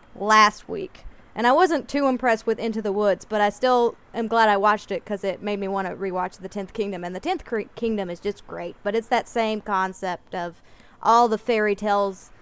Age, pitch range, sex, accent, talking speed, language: 20-39, 175-210 Hz, female, American, 225 wpm, English